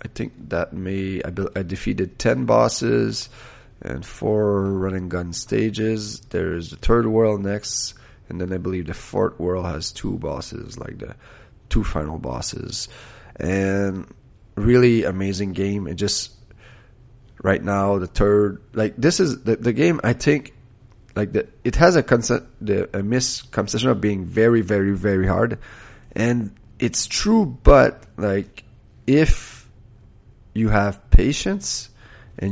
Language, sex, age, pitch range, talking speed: English, male, 30-49, 95-115 Hz, 140 wpm